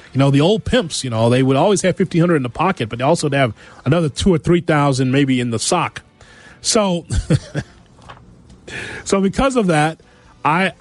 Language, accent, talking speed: English, American, 200 wpm